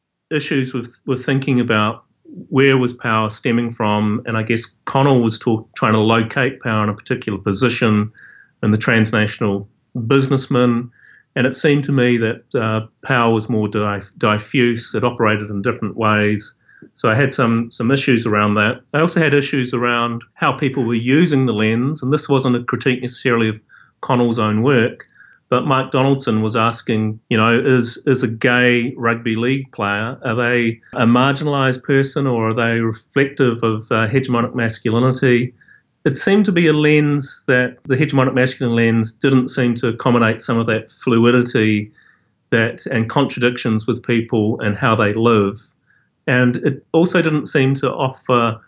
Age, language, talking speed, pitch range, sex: 40-59, English, 165 wpm, 110-135 Hz, male